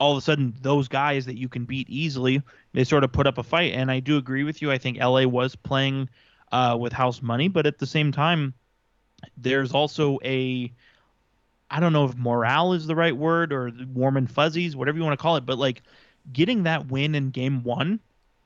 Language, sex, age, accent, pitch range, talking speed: English, male, 20-39, American, 125-145 Hz, 220 wpm